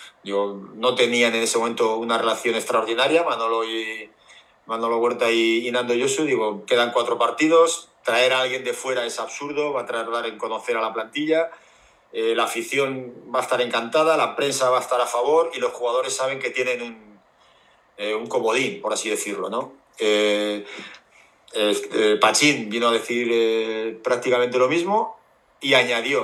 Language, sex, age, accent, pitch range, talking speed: Spanish, male, 40-59, Spanish, 115-145 Hz, 175 wpm